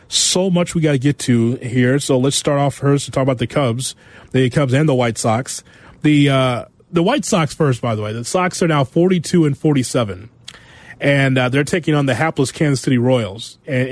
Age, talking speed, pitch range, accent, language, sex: 30-49, 220 wpm, 125-180 Hz, American, English, male